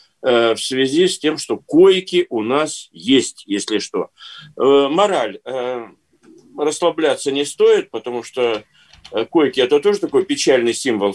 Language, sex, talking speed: Russian, male, 125 wpm